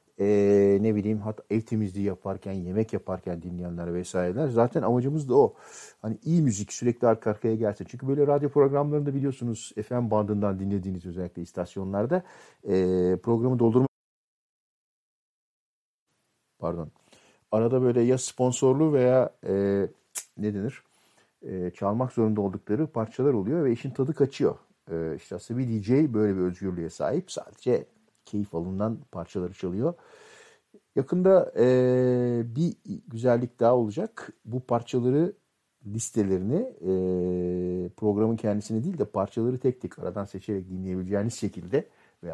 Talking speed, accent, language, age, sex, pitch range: 125 wpm, native, Turkish, 50-69, male, 95-125 Hz